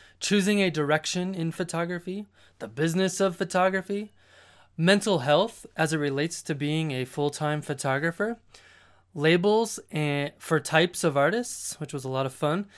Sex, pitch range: male, 145-190 Hz